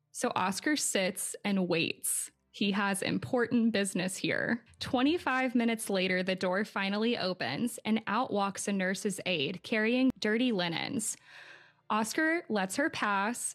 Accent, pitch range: American, 185-230 Hz